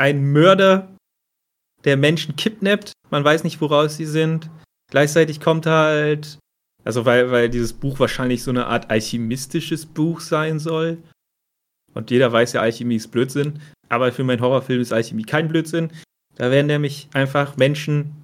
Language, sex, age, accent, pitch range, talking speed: German, male, 30-49, German, 125-160 Hz, 155 wpm